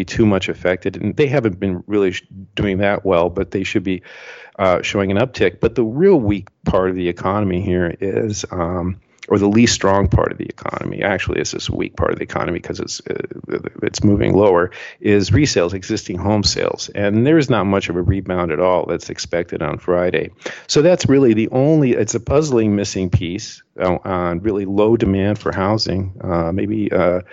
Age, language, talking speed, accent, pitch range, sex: 40-59, English, 195 wpm, American, 95-110 Hz, male